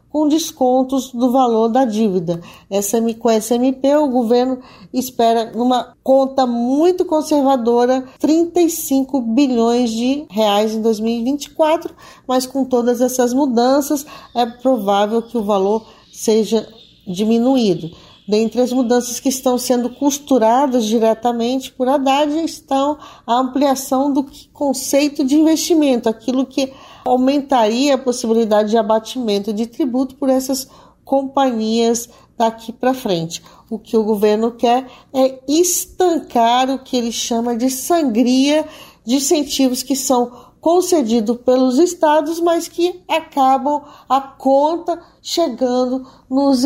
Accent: Brazilian